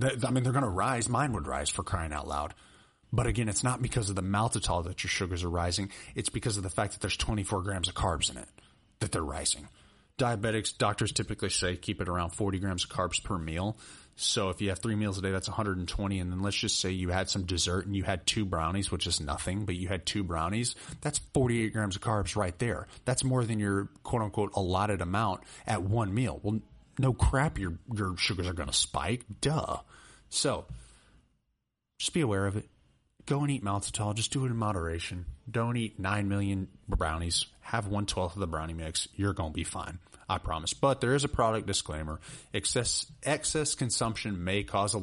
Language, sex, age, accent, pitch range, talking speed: English, male, 30-49, American, 90-110 Hz, 215 wpm